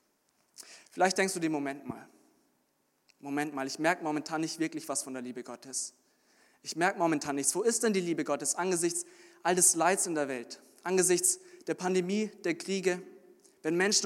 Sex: male